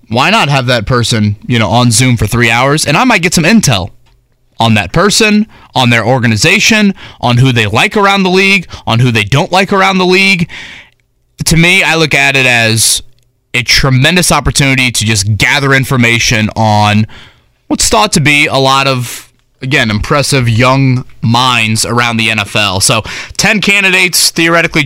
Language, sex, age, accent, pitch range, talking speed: English, male, 20-39, American, 110-140 Hz, 175 wpm